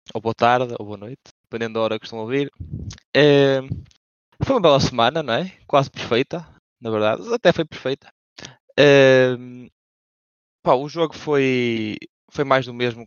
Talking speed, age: 165 wpm, 20-39